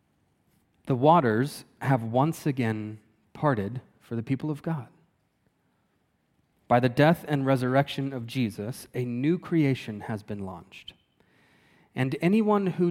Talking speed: 125 wpm